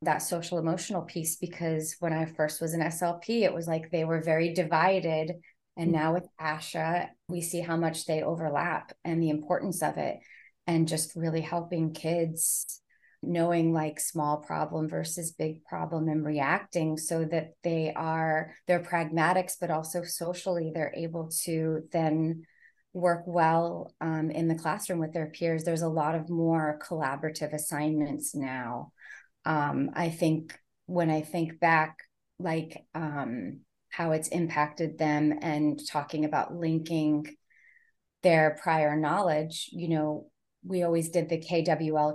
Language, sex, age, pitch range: English, female, 20-39, 155-170 Hz